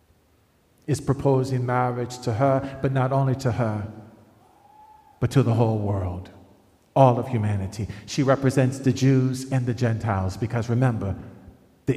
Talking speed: 140 wpm